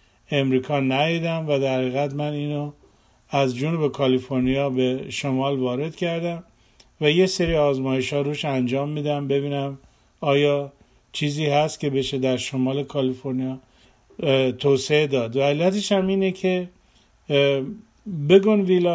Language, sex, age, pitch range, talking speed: Persian, male, 50-69, 135-165 Hz, 120 wpm